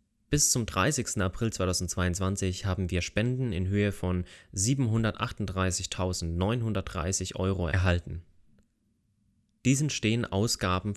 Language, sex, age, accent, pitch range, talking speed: German, male, 30-49, German, 90-110 Hz, 95 wpm